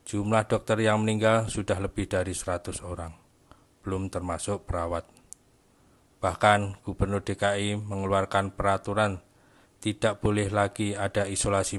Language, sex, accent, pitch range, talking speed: Indonesian, male, native, 95-110 Hz, 110 wpm